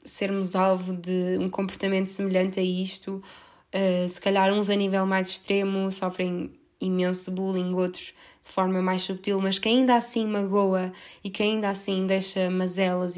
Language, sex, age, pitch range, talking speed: Portuguese, female, 20-39, 185-210 Hz, 165 wpm